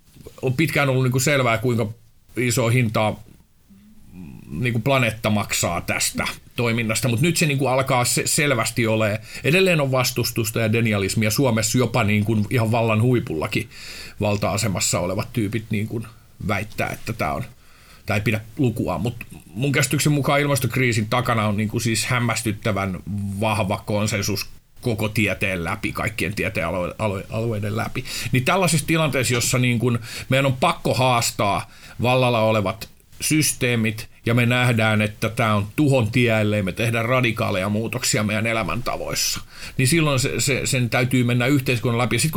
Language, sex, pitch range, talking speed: Finnish, male, 110-130 Hz, 130 wpm